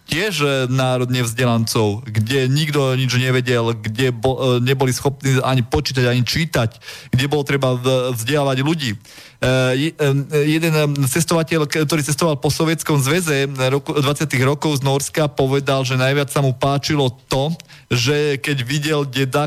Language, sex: Slovak, male